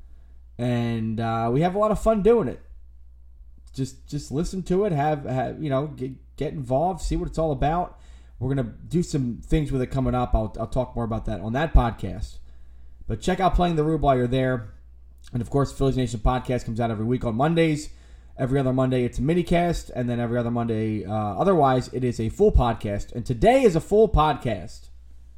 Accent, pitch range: American, 110-150 Hz